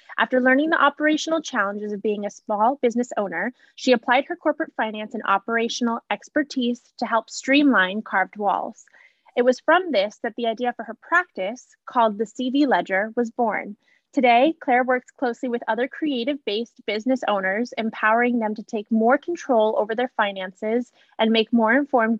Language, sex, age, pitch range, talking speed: English, female, 20-39, 220-265 Hz, 170 wpm